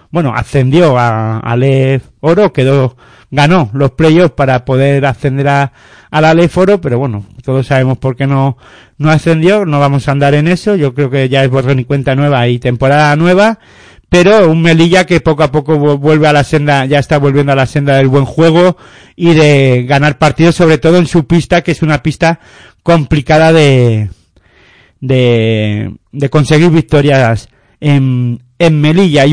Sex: male